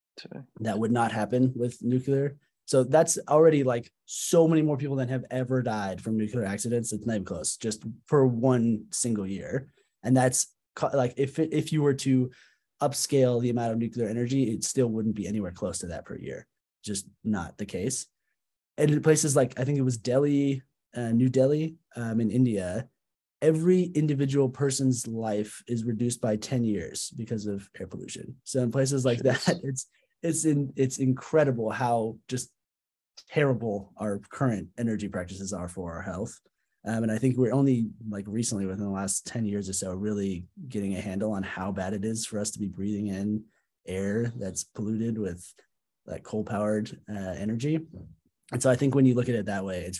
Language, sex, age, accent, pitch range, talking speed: English, male, 20-39, American, 105-130 Hz, 190 wpm